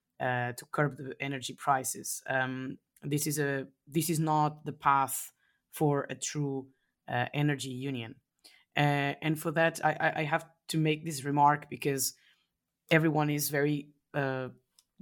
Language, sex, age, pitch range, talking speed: English, female, 20-39, 130-150 Hz, 150 wpm